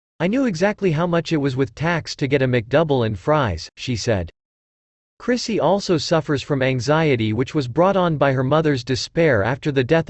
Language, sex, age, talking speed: English, male, 40-59, 195 wpm